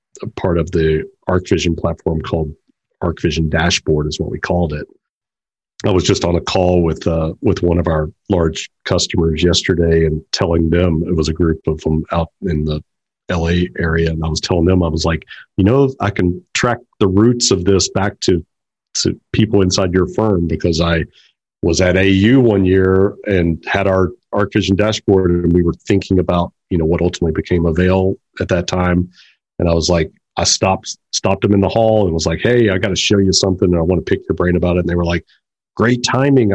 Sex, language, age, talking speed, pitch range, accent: male, English, 40-59, 210 wpm, 85-100 Hz, American